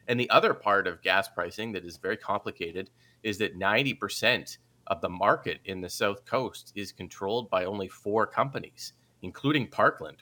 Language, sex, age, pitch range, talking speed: English, male, 30-49, 95-120 Hz, 170 wpm